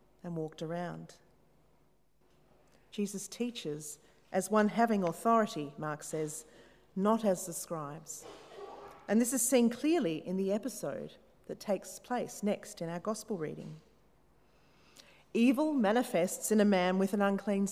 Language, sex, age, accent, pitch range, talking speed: English, female, 40-59, Australian, 175-230 Hz, 130 wpm